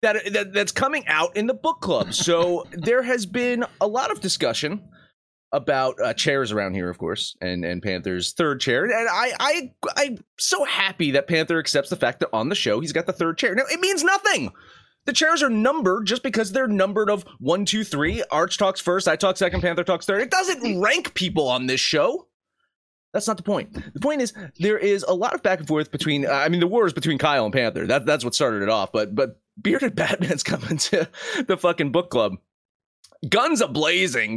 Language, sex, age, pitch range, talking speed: English, male, 30-49, 140-215 Hz, 215 wpm